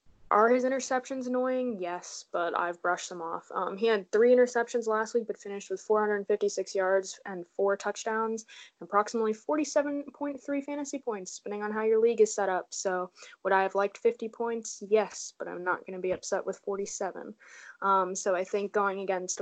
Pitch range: 185-205 Hz